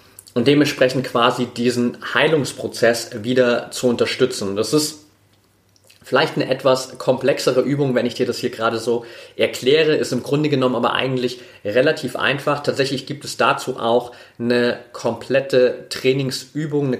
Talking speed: 140 wpm